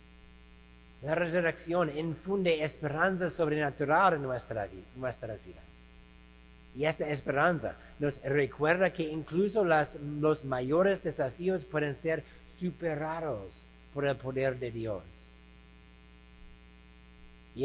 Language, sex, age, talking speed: English, male, 60-79, 90 wpm